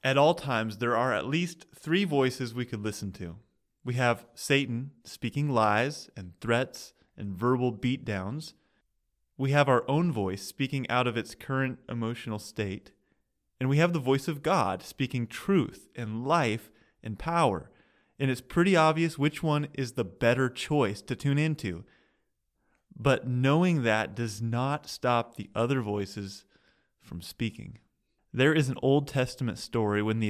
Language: English